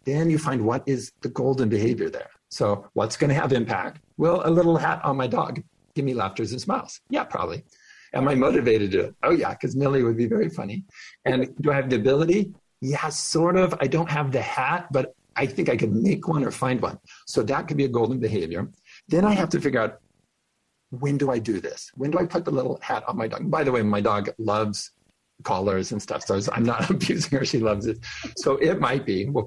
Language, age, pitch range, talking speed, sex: English, 50-69, 110-150 Hz, 240 wpm, male